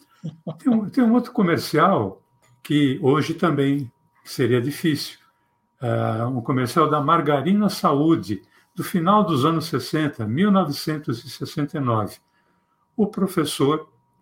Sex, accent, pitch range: male, Brazilian, 125-175 Hz